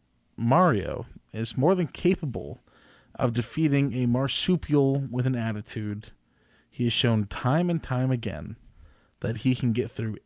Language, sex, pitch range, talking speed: English, male, 120-175 Hz, 140 wpm